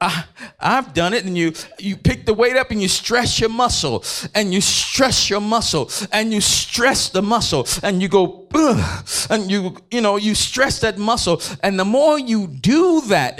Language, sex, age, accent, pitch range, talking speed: English, male, 50-69, American, 160-225 Hz, 195 wpm